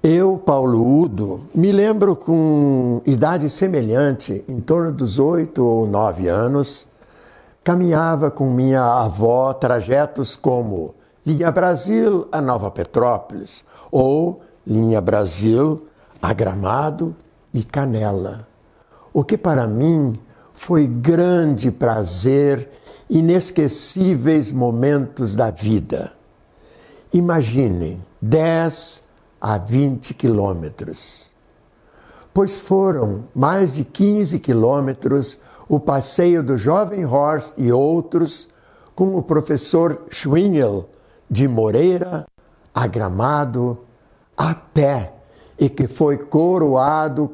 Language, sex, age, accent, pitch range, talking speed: Portuguese, male, 60-79, Brazilian, 120-160 Hz, 95 wpm